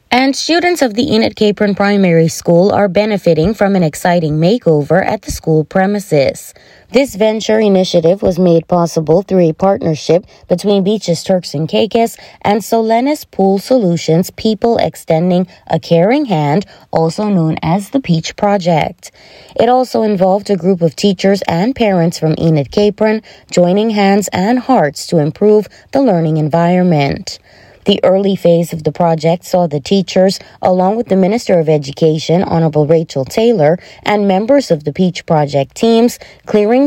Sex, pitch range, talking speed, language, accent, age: female, 165-205 Hz, 155 wpm, English, American, 20-39